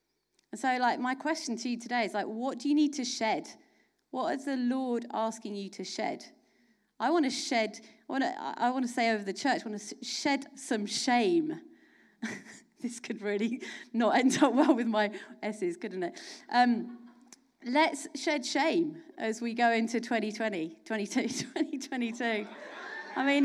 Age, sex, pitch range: 30-49, female, 225-305 Hz